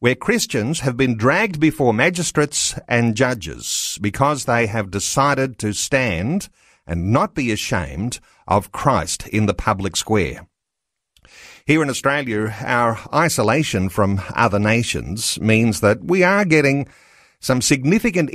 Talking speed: 130 wpm